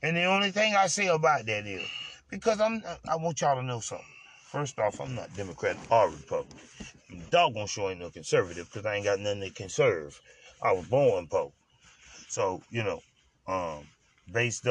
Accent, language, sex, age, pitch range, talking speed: American, English, male, 30-49, 115-155 Hz, 180 wpm